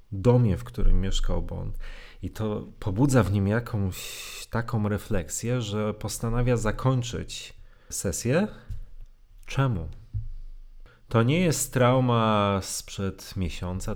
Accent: native